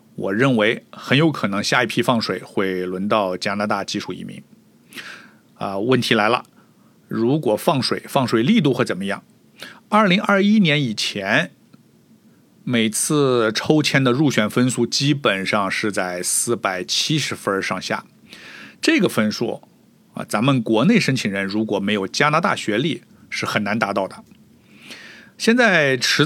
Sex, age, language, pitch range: male, 50-69, Chinese, 105-155 Hz